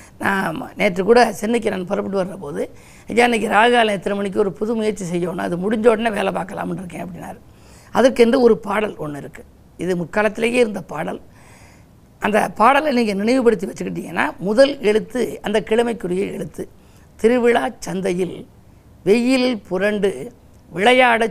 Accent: native